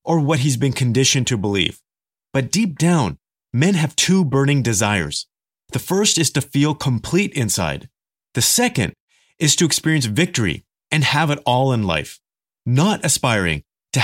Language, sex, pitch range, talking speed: English, male, 115-165 Hz, 160 wpm